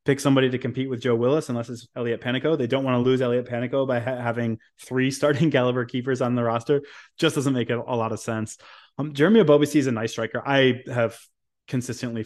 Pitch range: 115-145 Hz